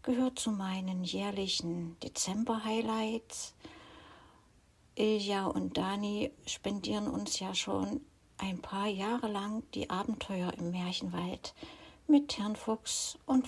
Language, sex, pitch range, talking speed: German, female, 200-260 Hz, 105 wpm